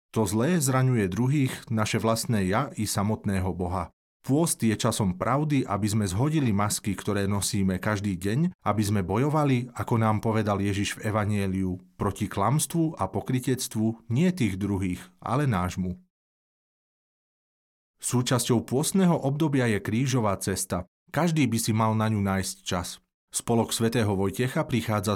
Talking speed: 140 wpm